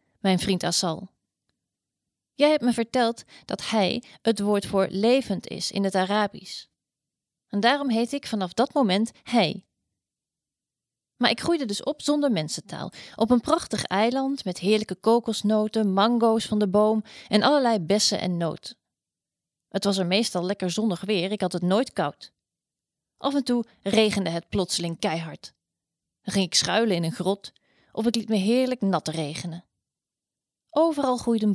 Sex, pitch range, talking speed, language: female, 190-240 Hz, 160 wpm, Dutch